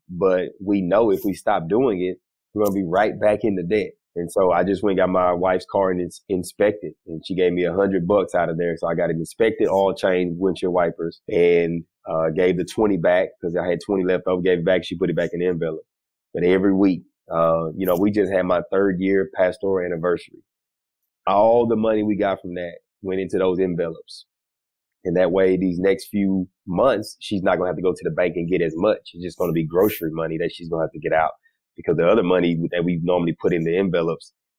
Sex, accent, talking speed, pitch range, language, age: male, American, 250 wpm, 85-95 Hz, English, 30-49